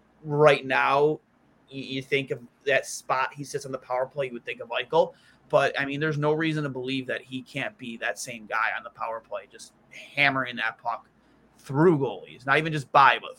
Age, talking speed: 30-49, 215 wpm